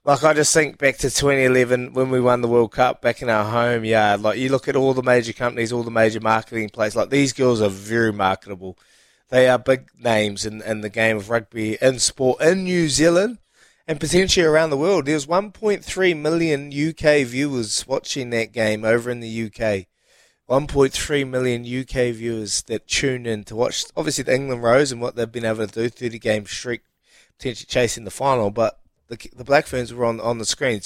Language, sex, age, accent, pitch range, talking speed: English, male, 20-39, Australian, 110-135 Hz, 205 wpm